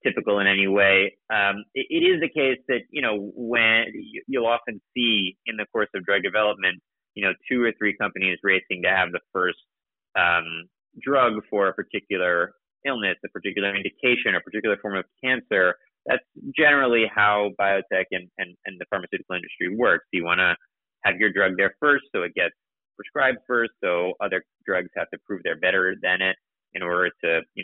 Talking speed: 190 wpm